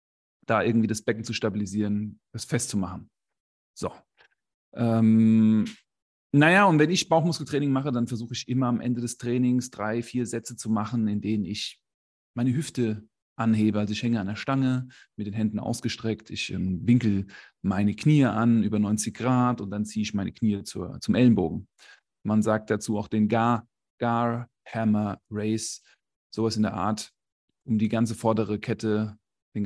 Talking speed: 165 wpm